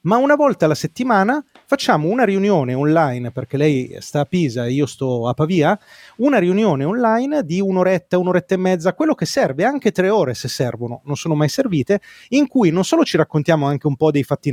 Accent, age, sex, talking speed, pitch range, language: native, 30-49, male, 205 wpm, 140-195 Hz, Italian